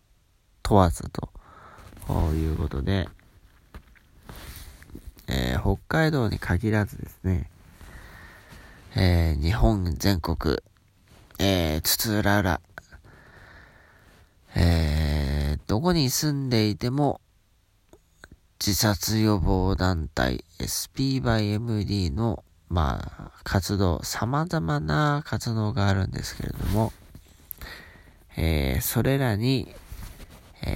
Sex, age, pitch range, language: male, 40-59, 85-110 Hz, Japanese